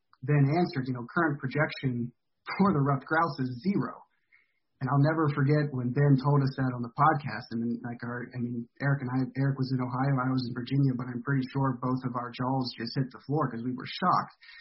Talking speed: 240 wpm